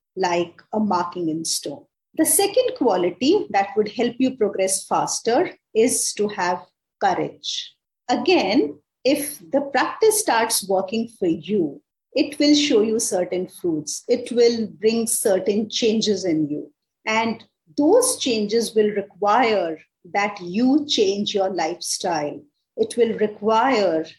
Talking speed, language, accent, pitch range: 130 wpm, English, Indian, 190-255 Hz